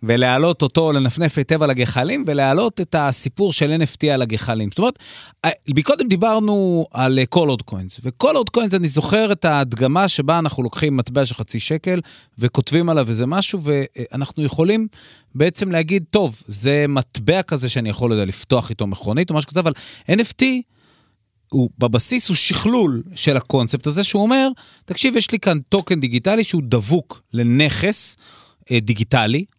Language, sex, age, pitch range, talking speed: Hebrew, male, 30-49, 115-165 Hz, 155 wpm